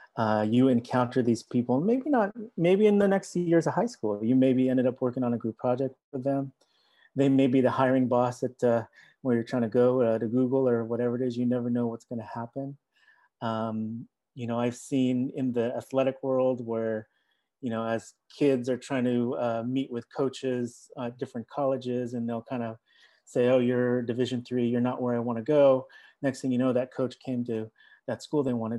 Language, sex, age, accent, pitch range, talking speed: English, male, 30-49, American, 115-135 Hz, 215 wpm